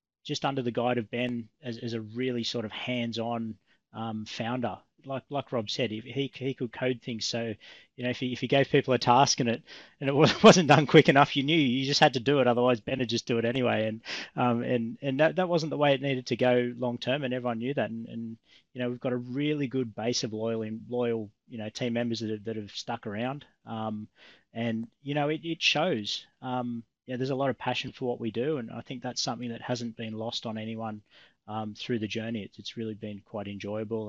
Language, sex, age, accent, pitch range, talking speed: English, male, 20-39, Australian, 110-130 Hz, 245 wpm